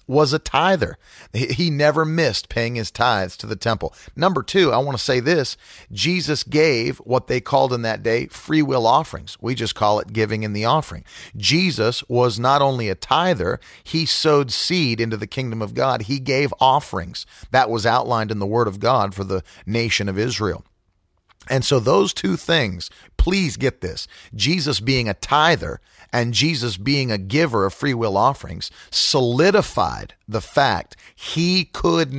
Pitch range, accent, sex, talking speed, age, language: 110-145 Hz, American, male, 175 wpm, 40-59, English